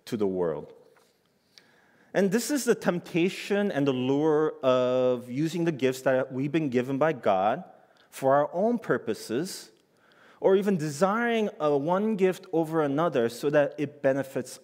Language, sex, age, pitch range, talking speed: English, male, 30-49, 130-195 Hz, 145 wpm